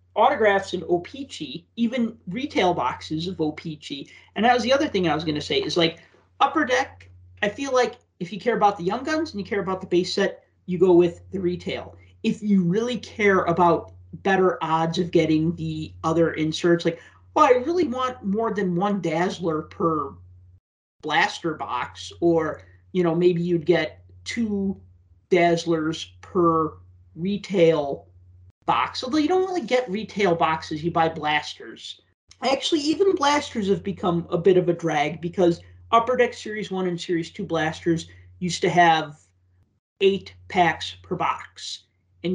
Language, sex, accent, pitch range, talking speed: English, male, American, 135-195 Hz, 165 wpm